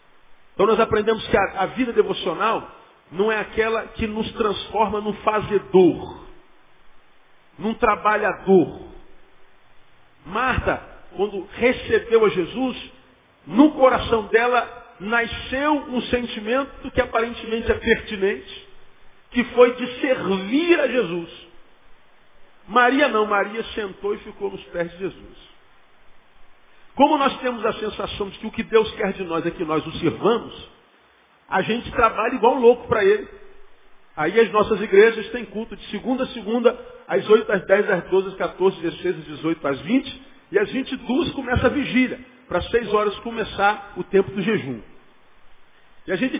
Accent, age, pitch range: Brazilian, 50-69, 205-245 Hz